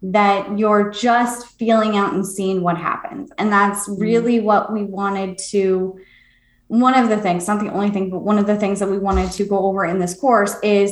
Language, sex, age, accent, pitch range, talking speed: English, female, 20-39, American, 185-210 Hz, 215 wpm